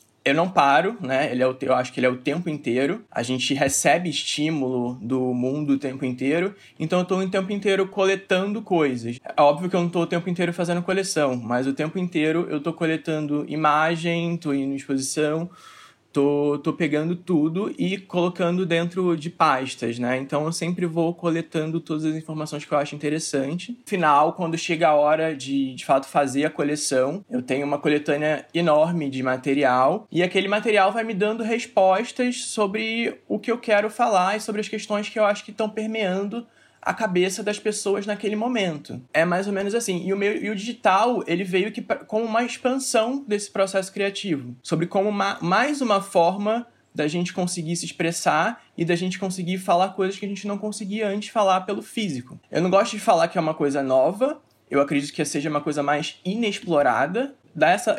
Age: 20-39